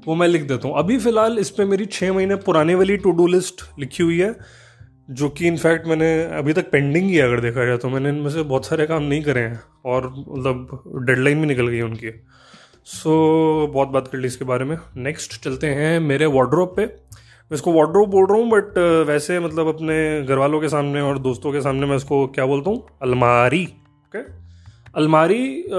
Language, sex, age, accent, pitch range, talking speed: Hindi, male, 20-39, native, 130-160 Hz, 200 wpm